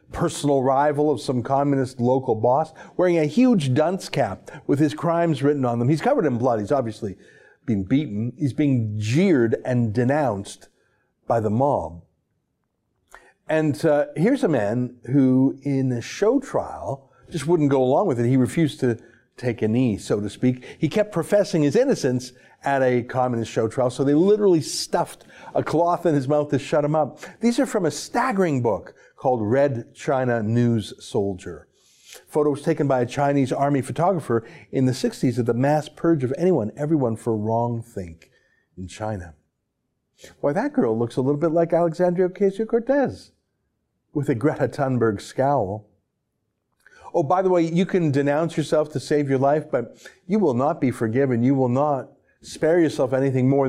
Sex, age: male, 50-69